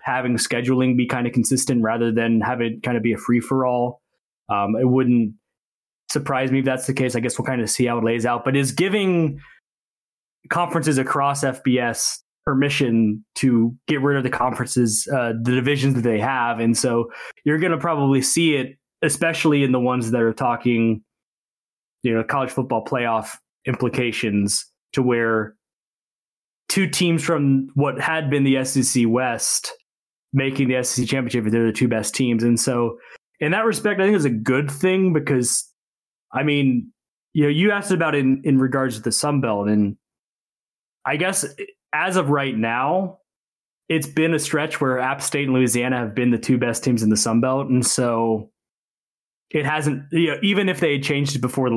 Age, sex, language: 20-39, male, English